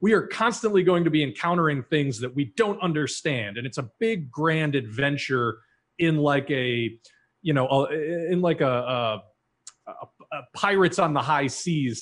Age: 30-49